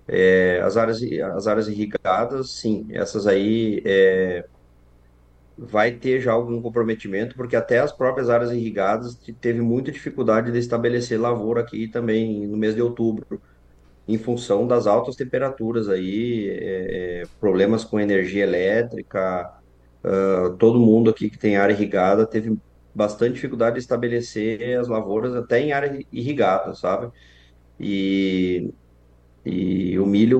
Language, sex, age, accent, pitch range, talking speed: Portuguese, male, 30-49, Brazilian, 95-120 Hz, 125 wpm